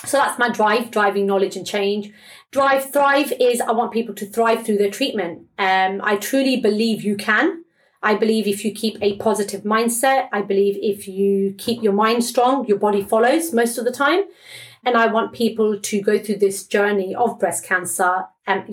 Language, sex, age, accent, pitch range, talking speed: English, female, 30-49, British, 200-240 Hz, 195 wpm